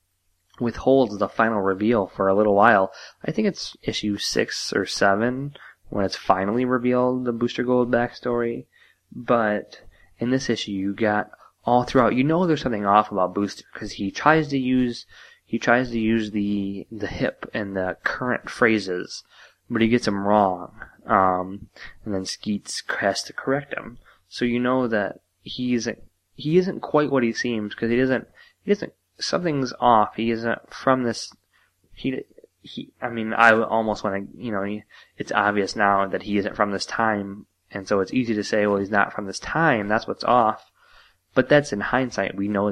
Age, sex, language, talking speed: 20-39, male, English, 185 wpm